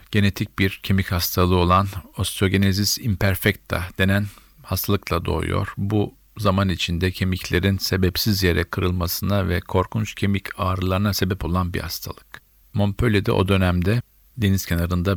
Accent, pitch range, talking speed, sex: native, 90-100 Hz, 120 wpm, male